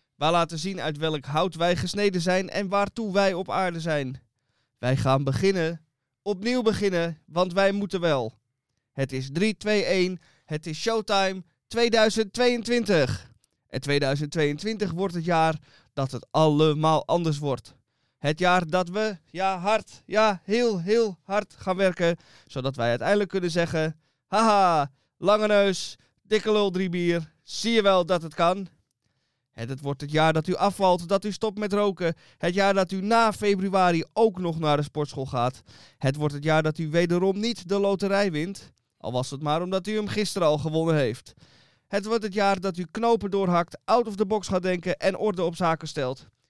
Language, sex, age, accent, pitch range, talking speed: Dutch, male, 20-39, Dutch, 150-200 Hz, 175 wpm